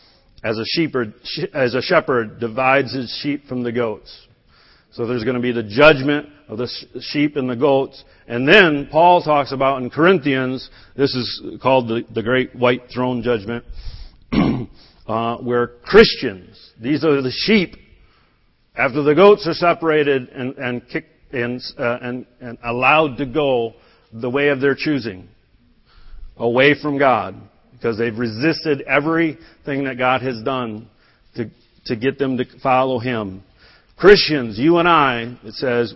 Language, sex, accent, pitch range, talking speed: English, male, American, 120-150 Hz, 145 wpm